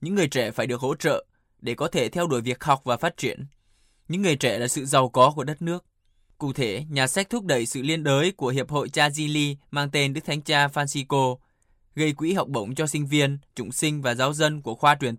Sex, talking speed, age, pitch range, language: male, 240 wpm, 20-39, 130-155 Hz, Vietnamese